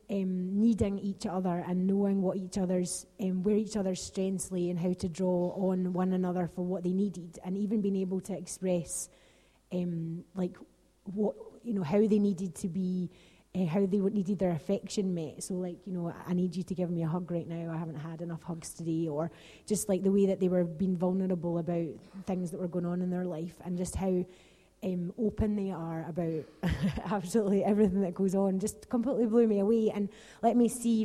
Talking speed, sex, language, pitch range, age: 215 wpm, female, English, 180-205 Hz, 20-39